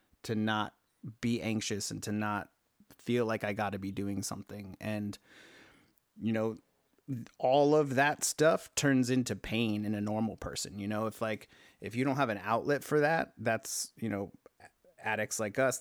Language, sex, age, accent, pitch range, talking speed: English, male, 30-49, American, 105-125 Hz, 180 wpm